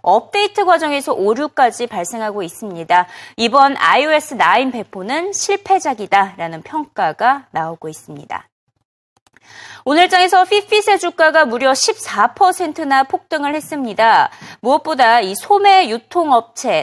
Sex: female